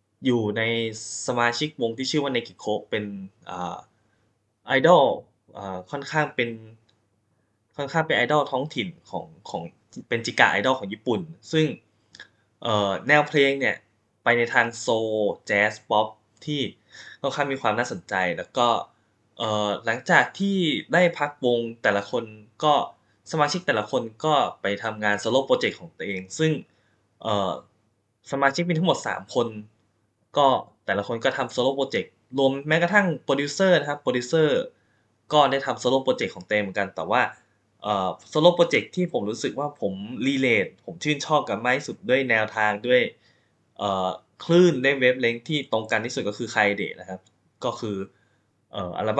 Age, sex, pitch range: 10-29, male, 105-145 Hz